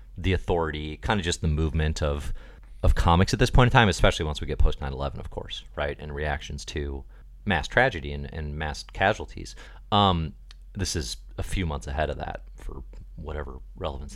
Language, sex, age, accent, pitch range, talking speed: English, male, 30-49, American, 75-110 Hz, 185 wpm